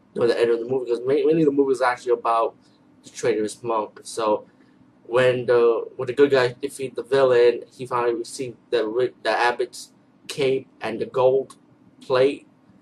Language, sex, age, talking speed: English, male, 20-39, 175 wpm